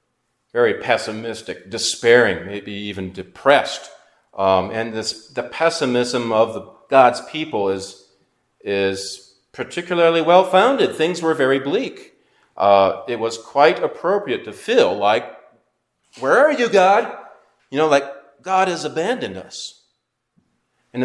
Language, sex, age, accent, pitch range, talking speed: English, male, 40-59, American, 100-140 Hz, 125 wpm